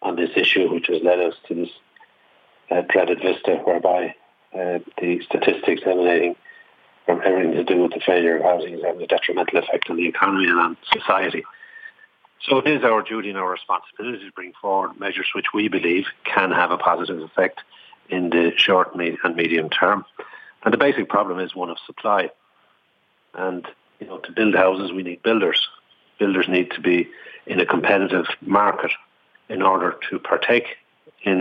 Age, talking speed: 50-69, 180 wpm